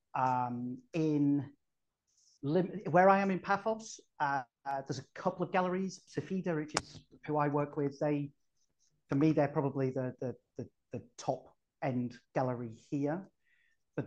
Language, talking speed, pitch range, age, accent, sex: English, 150 wpm, 130-155 Hz, 40-59, British, male